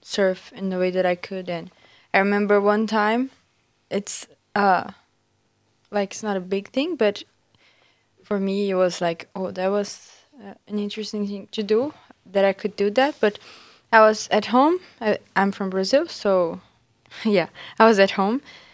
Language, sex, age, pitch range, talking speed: English, female, 20-39, 185-225 Hz, 175 wpm